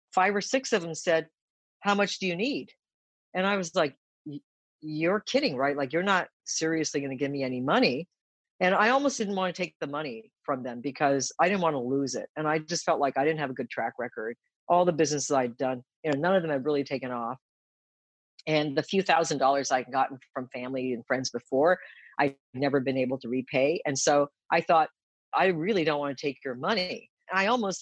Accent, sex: American, female